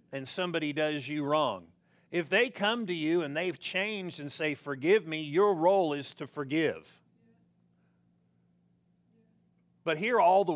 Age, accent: 50-69, American